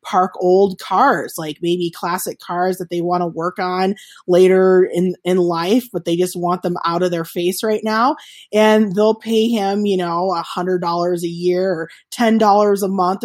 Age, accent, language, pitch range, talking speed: 20-39, American, English, 180-225 Hz, 200 wpm